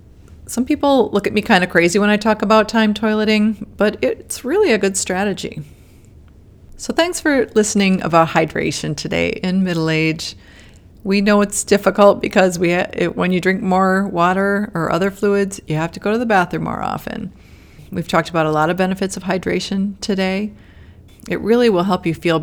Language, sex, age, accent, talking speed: English, female, 40-59, American, 190 wpm